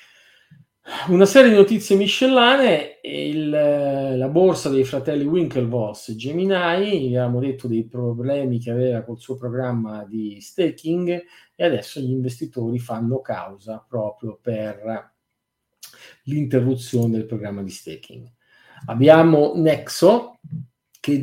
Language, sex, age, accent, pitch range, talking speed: Italian, male, 50-69, native, 120-150 Hz, 115 wpm